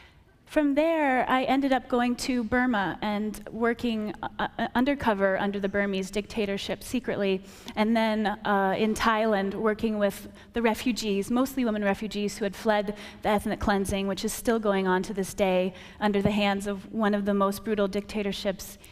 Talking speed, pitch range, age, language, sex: 170 wpm, 195-230 Hz, 30-49, English, female